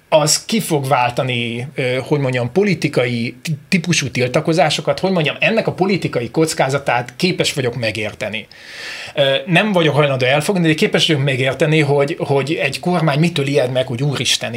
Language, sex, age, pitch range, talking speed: Hungarian, male, 30-49, 130-165 Hz, 145 wpm